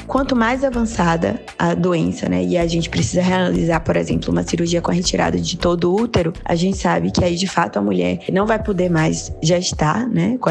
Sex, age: female, 20-39